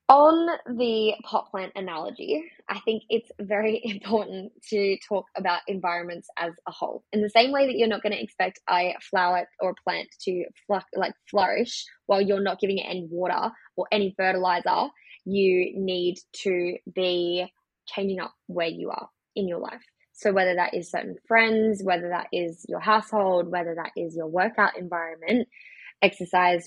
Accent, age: Australian, 10-29